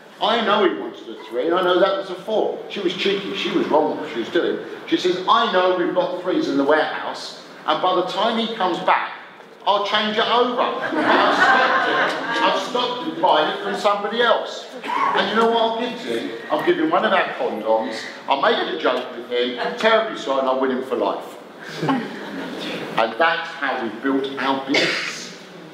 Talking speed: 215 wpm